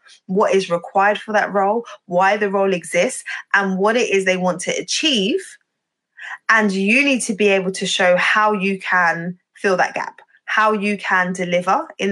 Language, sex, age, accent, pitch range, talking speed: English, female, 20-39, British, 180-215 Hz, 185 wpm